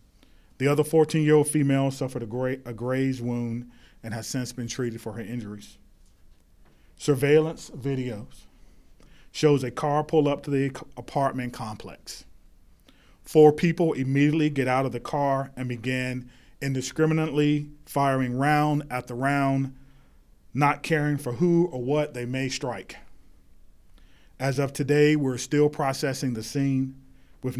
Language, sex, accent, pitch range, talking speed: English, male, American, 120-140 Hz, 135 wpm